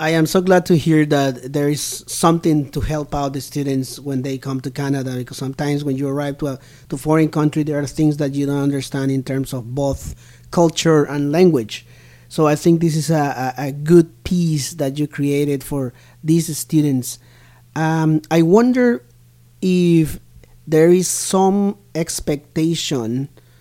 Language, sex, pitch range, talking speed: English, male, 130-155 Hz, 170 wpm